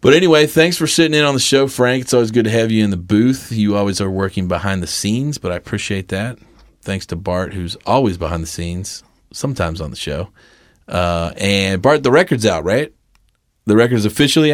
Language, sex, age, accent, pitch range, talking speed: English, male, 30-49, American, 95-125 Hz, 215 wpm